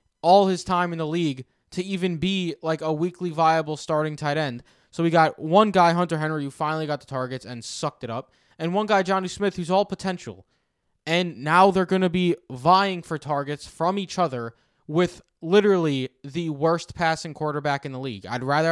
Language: English